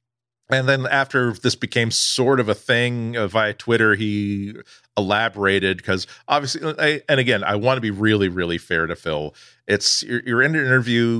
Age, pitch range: 40-59, 105-130 Hz